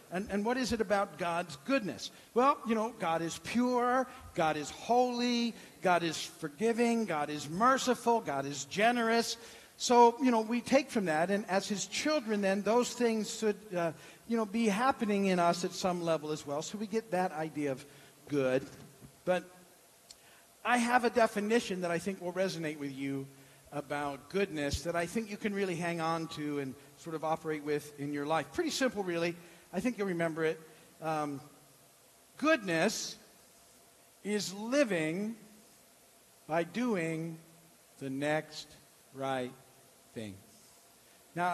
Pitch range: 155-220 Hz